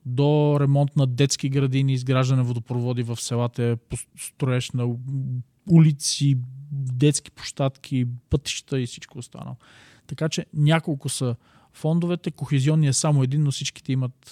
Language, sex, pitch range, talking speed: Bulgarian, male, 125-150 Hz, 125 wpm